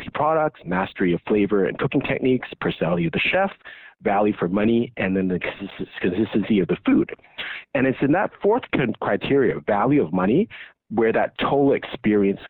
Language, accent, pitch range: English, American, 105-160 Hz